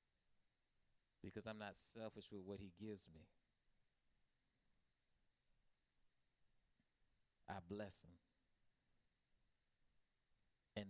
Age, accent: 30-49, American